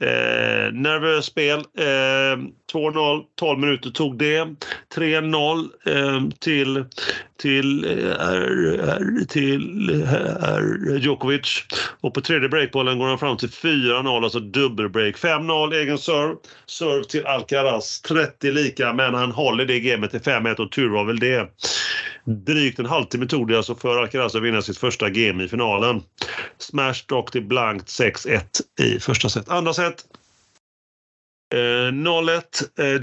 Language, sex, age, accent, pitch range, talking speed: Swedish, male, 30-49, native, 120-145 Hz, 140 wpm